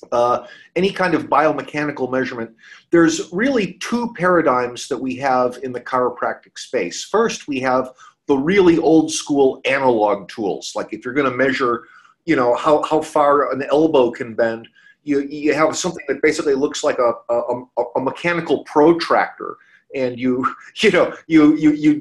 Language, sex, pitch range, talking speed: English, male, 130-180 Hz, 165 wpm